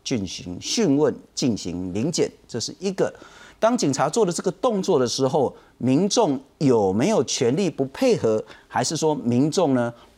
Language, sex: Chinese, male